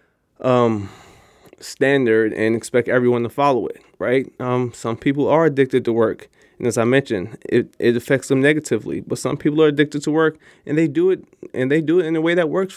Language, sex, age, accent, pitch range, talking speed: English, male, 20-39, American, 120-140 Hz, 210 wpm